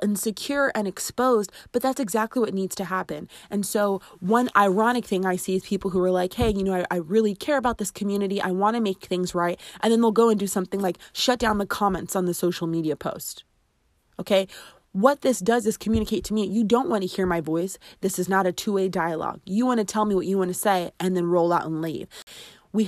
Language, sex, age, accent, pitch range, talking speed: English, female, 20-39, American, 185-220 Hz, 245 wpm